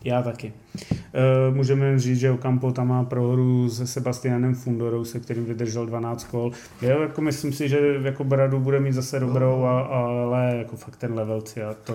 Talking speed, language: 170 wpm, Czech